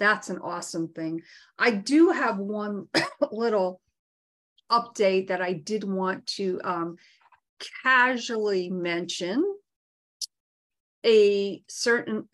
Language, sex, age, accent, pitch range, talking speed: English, female, 40-59, American, 185-215 Hz, 95 wpm